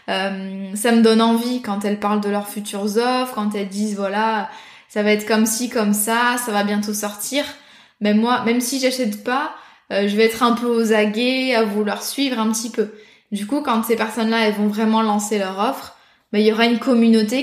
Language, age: French, 20-39